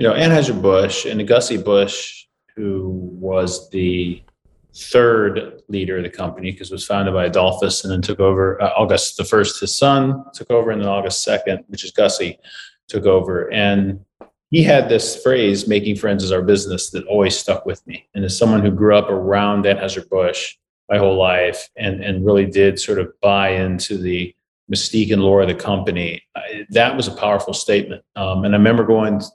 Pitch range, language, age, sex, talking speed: 95-110 Hz, English, 30-49, male, 185 wpm